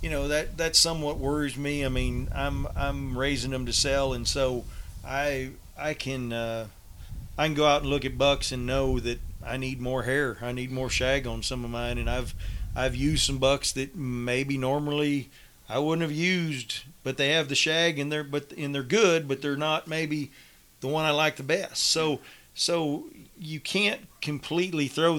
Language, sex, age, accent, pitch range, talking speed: English, male, 40-59, American, 125-145 Hz, 200 wpm